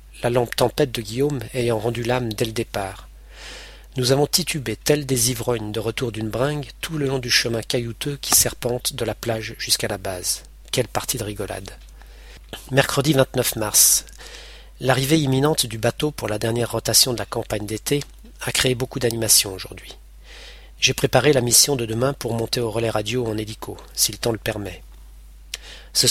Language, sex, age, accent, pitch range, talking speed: French, male, 40-59, French, 110-130 Hz, 180 wpm